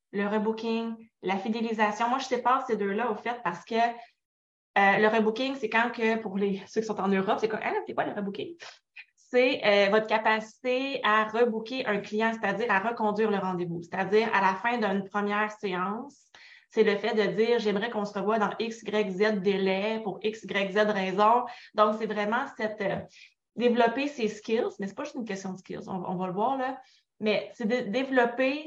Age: 20-39